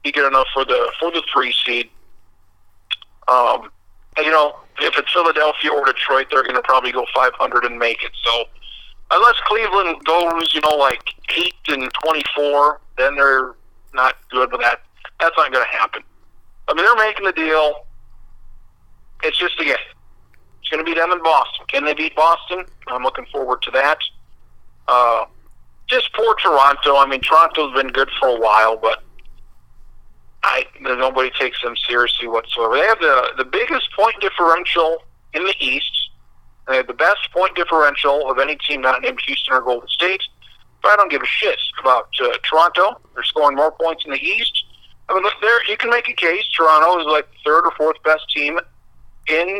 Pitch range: 125-165 Hz